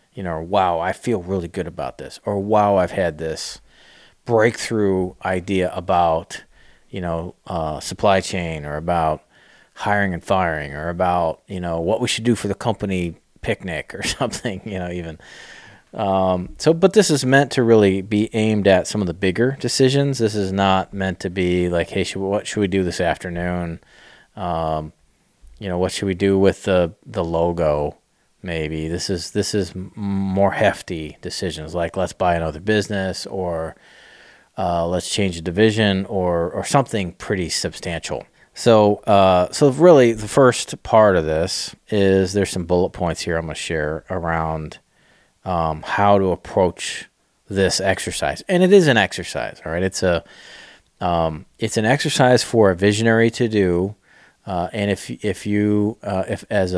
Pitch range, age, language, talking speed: 85-105 Hz, 30-49, English, 170 wpm